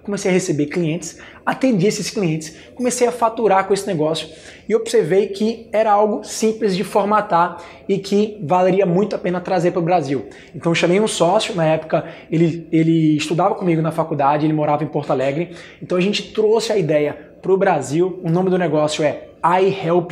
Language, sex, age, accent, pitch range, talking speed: Portuguese, male, 20-39, Brazilian, 165-195 Hz, 195 wpm